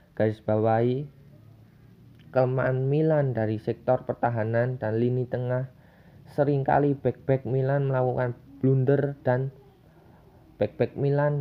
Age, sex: 20-39, male